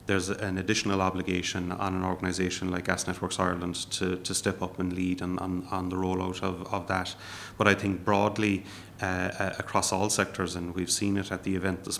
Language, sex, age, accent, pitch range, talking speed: English, male, 30-49, Irish, 90-100 Hz, 205 wpm